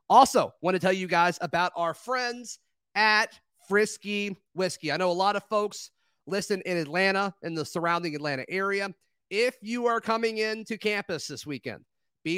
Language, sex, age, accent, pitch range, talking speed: English, male, 30-49, American, 145-195 Hz, 170 wpm